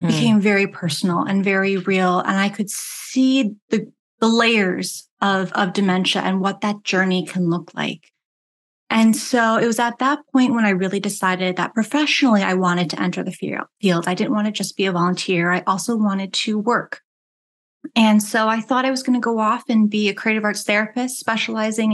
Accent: American